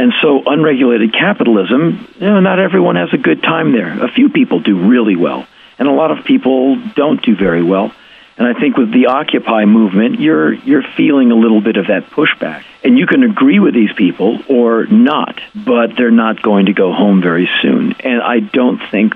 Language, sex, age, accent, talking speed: English, male, 50-69, American, 205 wpm